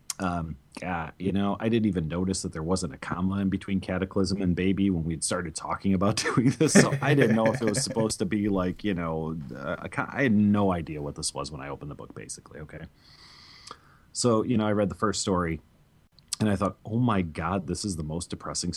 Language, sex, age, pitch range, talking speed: English, male, 30-49, 80-100 Hz, 235 wpm